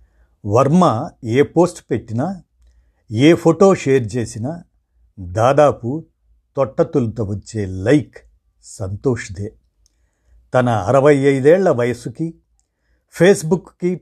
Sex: male